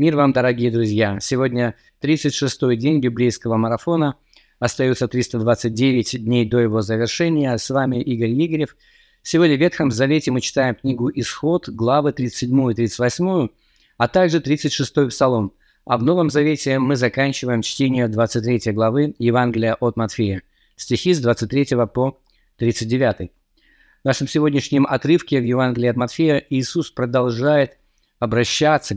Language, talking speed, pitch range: Russian, 125 wpm, 120-145 Hz